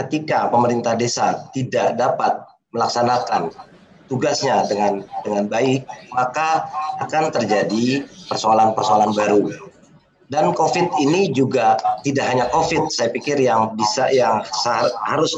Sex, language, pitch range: male, Indonesian, 120-160 Hz